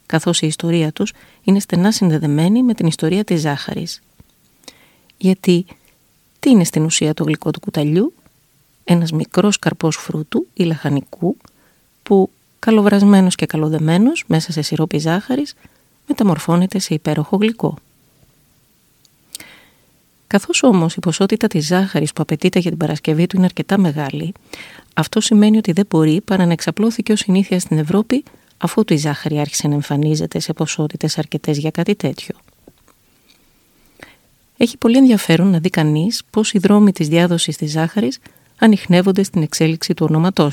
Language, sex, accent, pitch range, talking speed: Greek, female, native, 155-200 Hz, 140 wpm